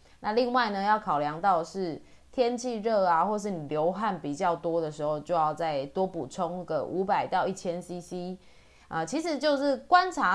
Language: Chinese